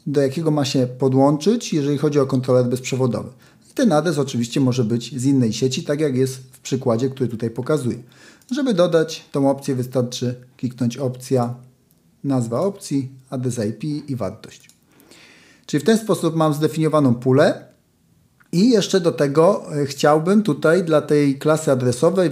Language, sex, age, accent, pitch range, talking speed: Polish, male, 40-59, native, 125-155 Hz, 150 wpm